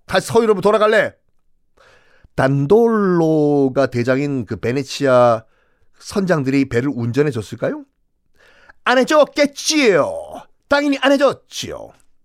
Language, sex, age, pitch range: Korean, male, 40-59, 120-195 Hz